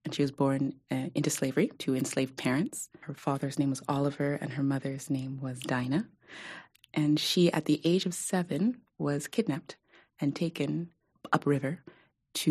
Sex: female